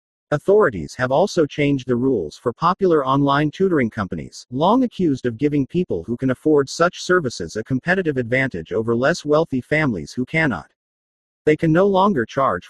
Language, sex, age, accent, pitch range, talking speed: English, male, 40-59, American, 120-160 Hz, 165 wpm